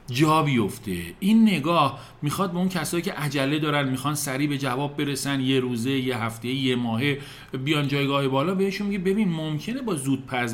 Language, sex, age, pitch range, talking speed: Persian, male, 40-59, 120-160 Hz, 170 wpm